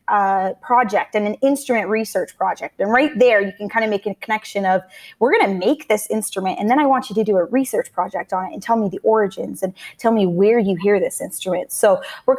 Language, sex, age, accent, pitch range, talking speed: English, female, 20-39, American, 195-240 Hz, 245 wpm